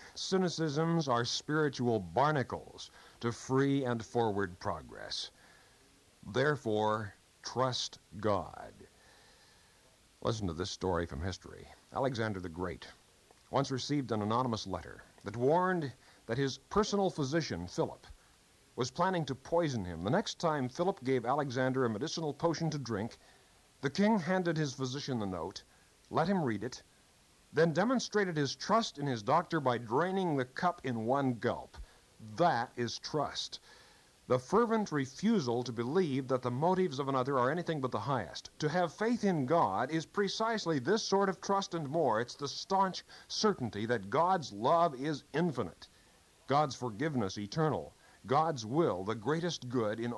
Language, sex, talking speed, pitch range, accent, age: English, male, 145 wpm, 120-180 Hz, American, 50-69